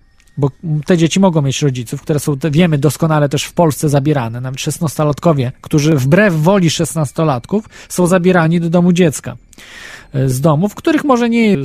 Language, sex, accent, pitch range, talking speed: Polish, male, native, 130-175 Hz, 165 wpm